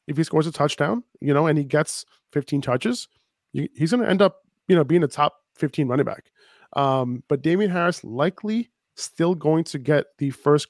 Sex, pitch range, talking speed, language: male, 135-160 Hz, 200 wpm, English